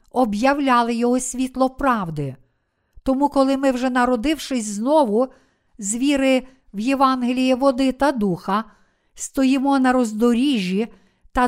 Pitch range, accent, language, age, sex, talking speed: 225-270 Hz, native, Ukrainian, 50-69, female, 110 wpm